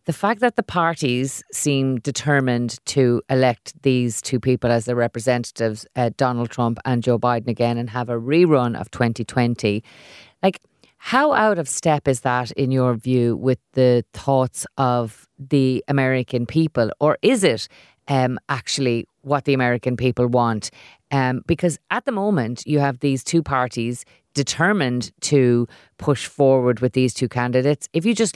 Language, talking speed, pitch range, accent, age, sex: English, 160 wpm, 125-155 Hz, Irish, 30-49, female